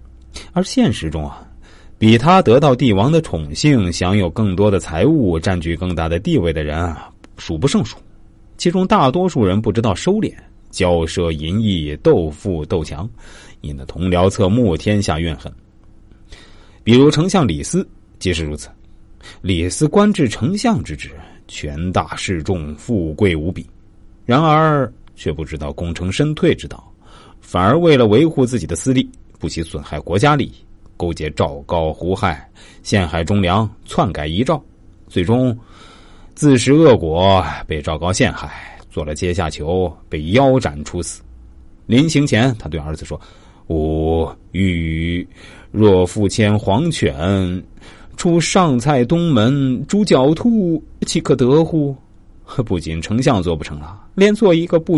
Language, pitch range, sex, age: Chinese, 85-125 Hz, male, 30-49